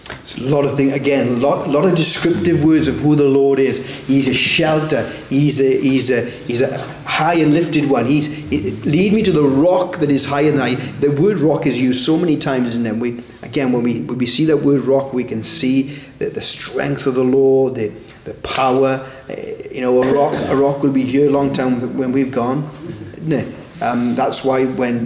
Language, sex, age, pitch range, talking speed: English, male, 30-49, 130-150 Hz, 220 wpm